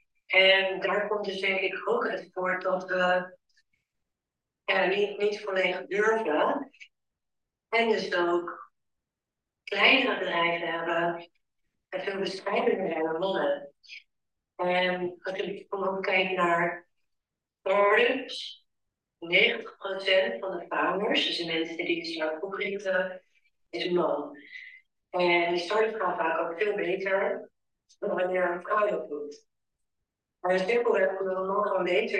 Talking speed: 130 wpm